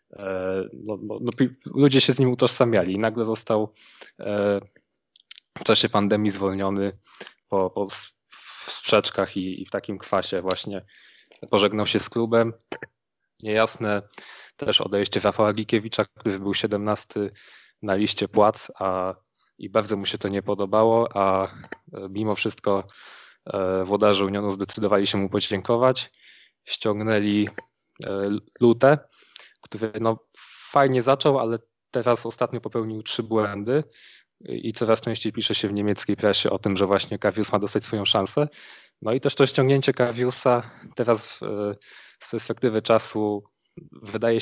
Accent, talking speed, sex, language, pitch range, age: native, 140 wpm, male, Polish, 100-115 Hz, 20-39